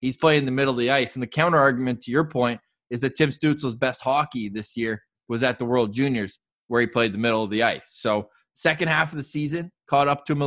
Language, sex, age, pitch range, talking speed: English, male, 20-39, 120-145 Hz, 270 wpm